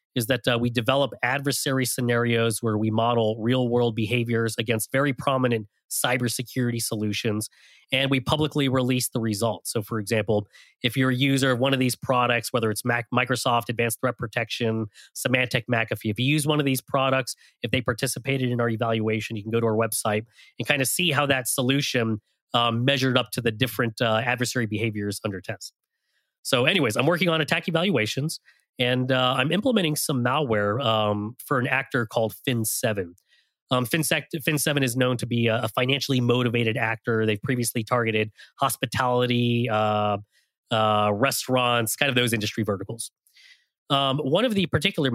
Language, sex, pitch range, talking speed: English, male, 115-135 Hz, 170 wpm